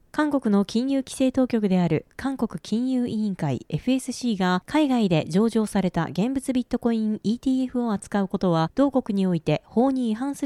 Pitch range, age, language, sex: 195-265 Hz, 20-39, Japanese, female